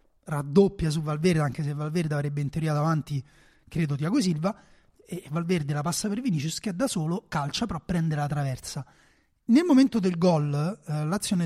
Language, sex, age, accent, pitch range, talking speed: Italian, male, 30-49, native, 155-200 Hz, 175 wpm